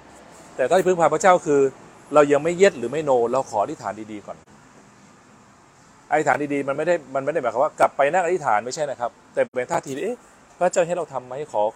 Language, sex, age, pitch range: Thai, male, 20-39, 120-175 Hz